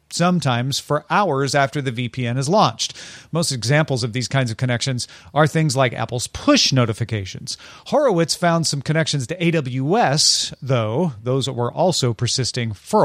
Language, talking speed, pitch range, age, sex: English, 155 wpm, 125-160 Hz, 40-59, male